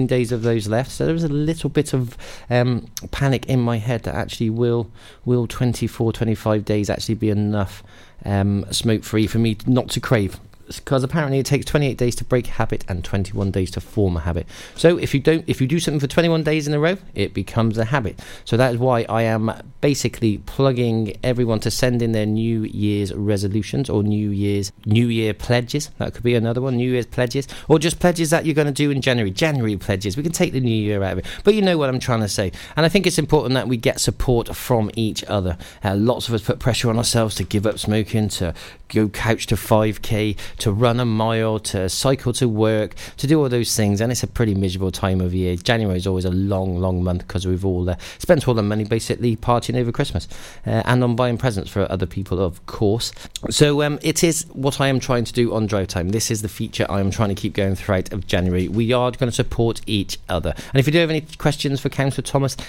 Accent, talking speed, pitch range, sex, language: British, 240 wpm, 100-125 Hz, male, English